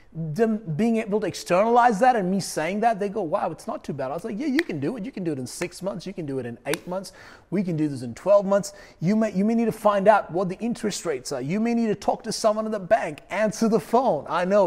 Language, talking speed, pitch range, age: English, 305 wpm, 160-210 Hz, 30-49